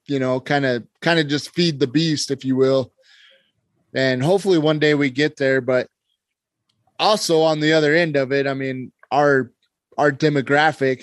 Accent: American